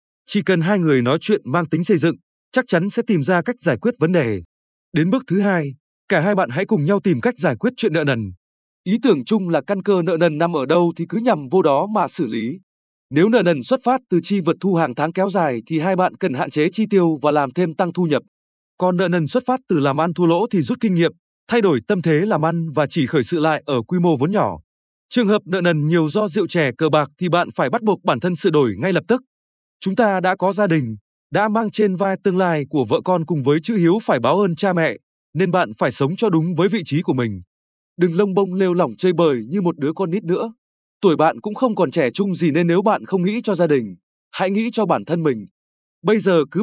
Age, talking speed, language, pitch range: 20-39, 270 wpm, Vietnamese, 160-205 Hz